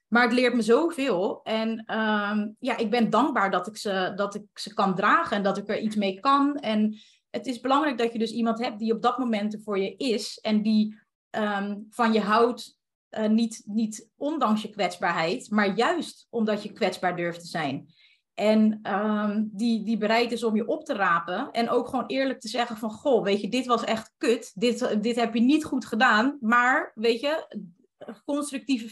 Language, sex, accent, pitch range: Dutch, female, Dutch, 210-250 Hz